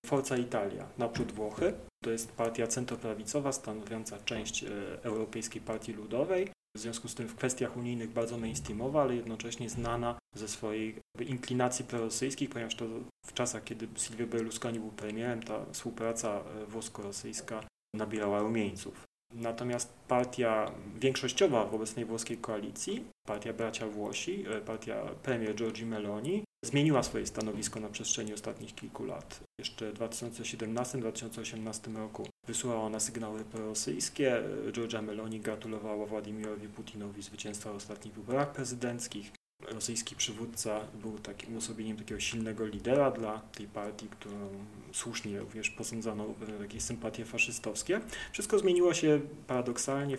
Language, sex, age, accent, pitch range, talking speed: Polish, male, 30-49, native, 110-120 Hz, 125 wpm